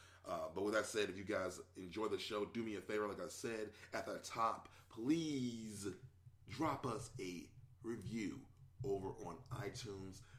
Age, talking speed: 30-49, 170 wpm